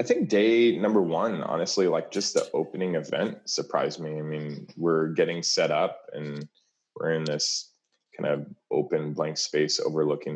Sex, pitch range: male, 75-80 Hz